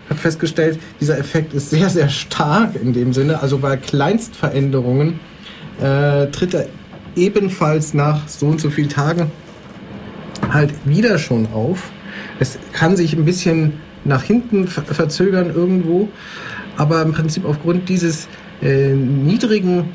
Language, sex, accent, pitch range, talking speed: German, male, German, 140-175 Hz, 135 wpm